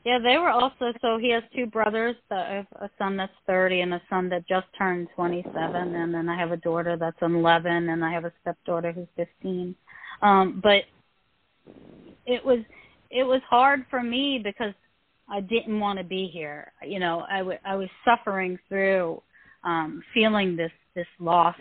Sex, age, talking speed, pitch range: female, 30-49, 185 wpm, 175-220 Hz